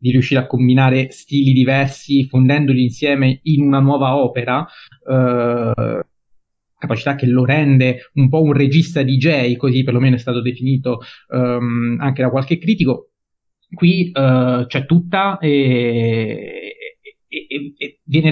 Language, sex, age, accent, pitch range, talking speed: Italian, male, 30-49, native, 130-170 Hz, 135 wpm